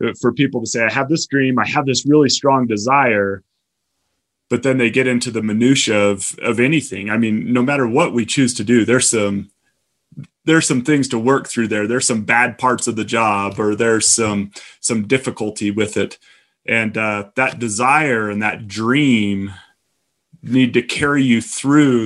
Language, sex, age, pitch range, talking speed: English, male, 30-49, 110-135 Hz, 185 wpm